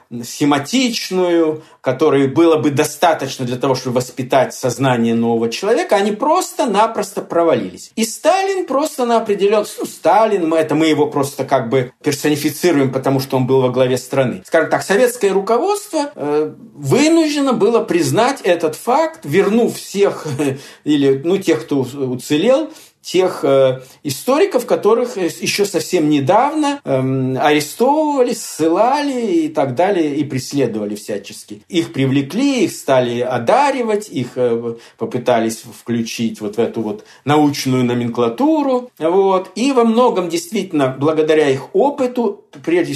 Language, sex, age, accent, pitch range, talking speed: Russian, male, 50-69, native, 130-210 Hz, 120 wpm